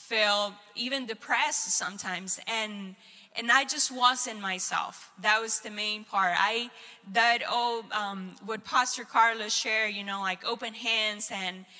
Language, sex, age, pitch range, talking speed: English, female, 10-29, 200-235 Hz, 145 wpm